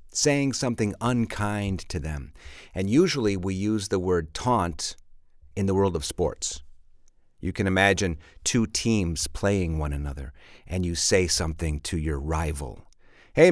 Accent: American